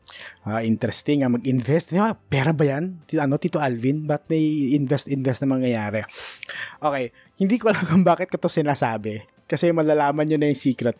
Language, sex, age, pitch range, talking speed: Filipino, male, 20-39, 115-160 Hz, 175 wpm